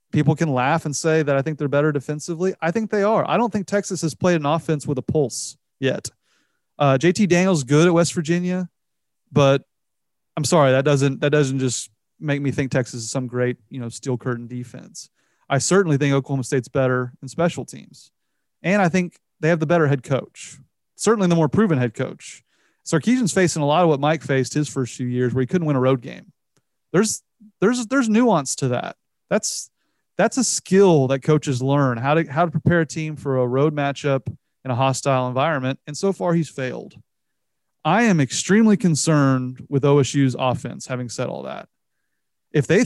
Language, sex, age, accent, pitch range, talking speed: English, male, 30-49, American, 135-175 Hz, 200 wpm